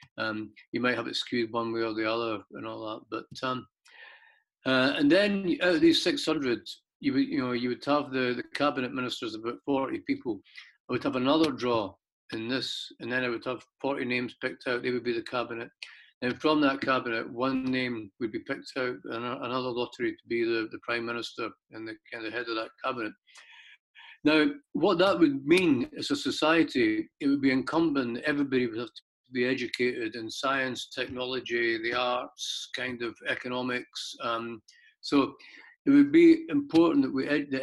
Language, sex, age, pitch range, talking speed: English, male, 50-69, 120-165 Hz, 195 wpm